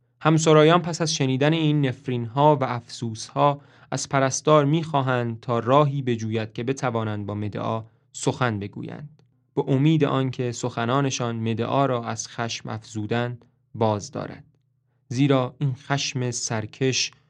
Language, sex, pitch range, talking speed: English, male, 120-150 Hz, 130 wpm